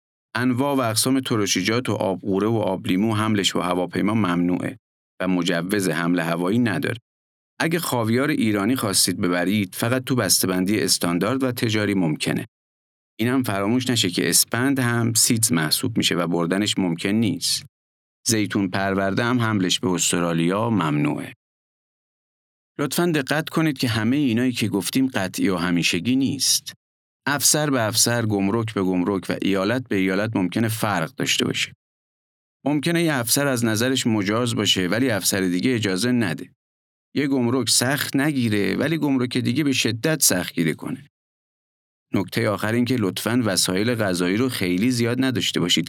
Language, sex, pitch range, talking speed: Persian, male, 90-125 Hz, 145 wpm